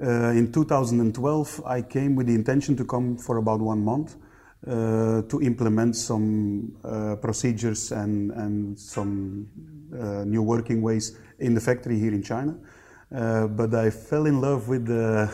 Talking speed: 160 wpm